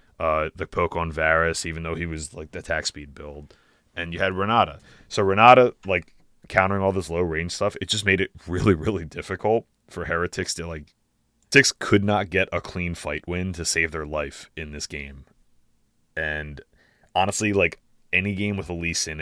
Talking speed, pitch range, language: 195 wpm, 75-90 Hz, English